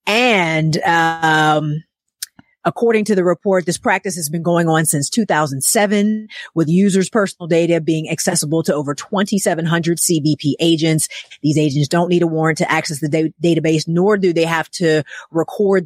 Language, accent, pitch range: English, American, 160-195 Hz